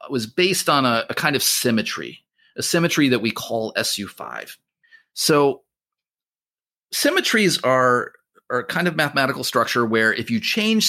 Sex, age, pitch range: male, 30-49, 110-140 Hz